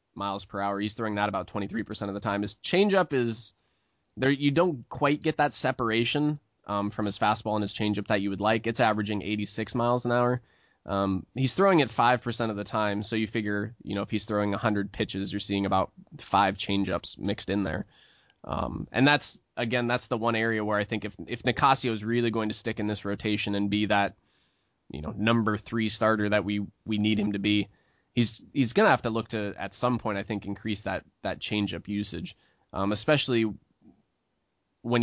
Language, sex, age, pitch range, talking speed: English, male, 20-39, 100-115 Hz, 210 wpm